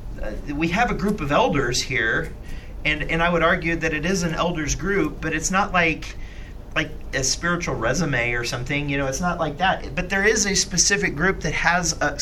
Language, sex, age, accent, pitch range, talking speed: English, male, 40-59, American, 130-180 Hz, 215 wpm